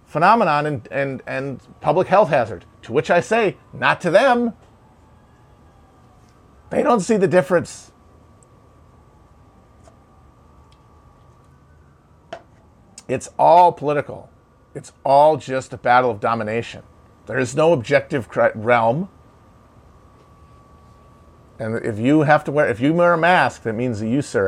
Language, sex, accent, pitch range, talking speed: English, male, American, 105-145 Hz, 125 wpm